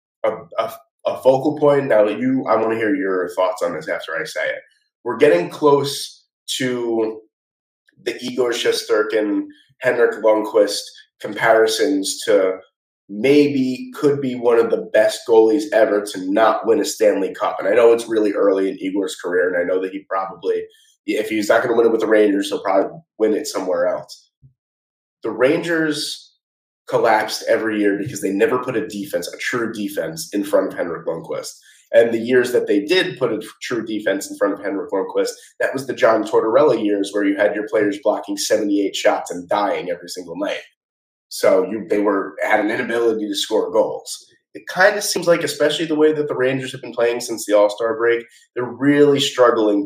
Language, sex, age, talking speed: English, male, 20-39, 195 wpm